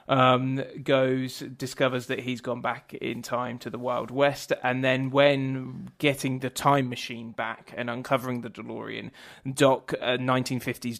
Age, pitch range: 20-39, 125-145 Hz